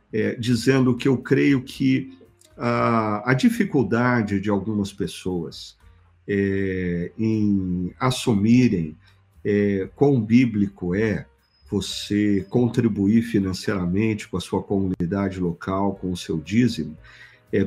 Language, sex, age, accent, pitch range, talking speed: Portuguese, male, 50-69, Brazilian, 100-125 Hz, 110 wpm